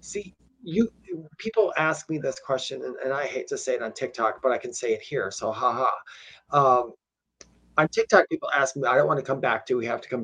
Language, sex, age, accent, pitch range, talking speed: English, male, 30-49, American, 150-220 Hz, 245 wpm